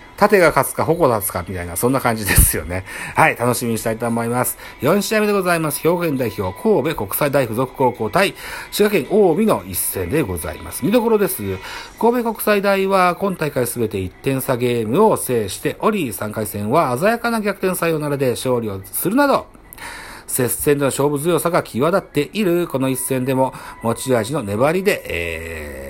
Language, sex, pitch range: Japanese, male, 110-175 Hz